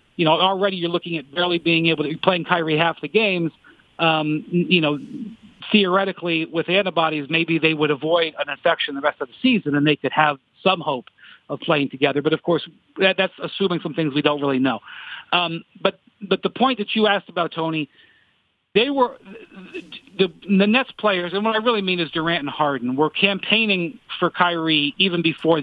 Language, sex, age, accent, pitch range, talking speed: English, male, 40-59, American, 155-190 Hz, 195 wpm